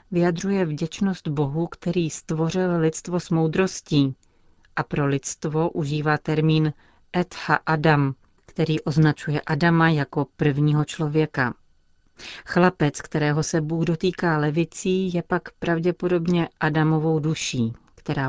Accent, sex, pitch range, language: native, female, 145-170 Hz, Czech